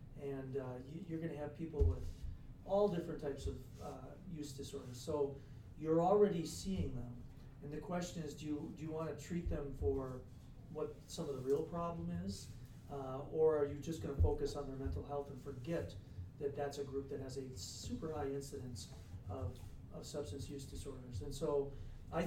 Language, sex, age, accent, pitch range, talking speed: English, male, 40-59, American, 125-150 Hz, 185 wpm